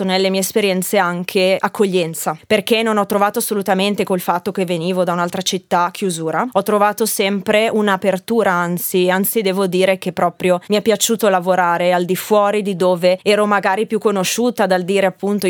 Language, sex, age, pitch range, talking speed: Italian, female, 20-39, 185-215 Hz, 170 wpm